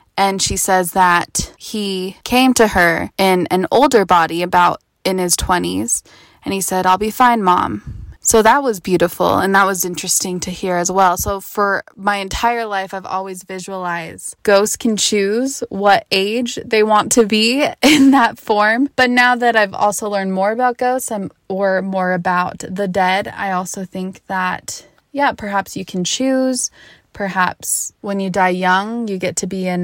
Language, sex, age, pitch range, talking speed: English, female, 20-39, 185-225 Hz, 175 wpm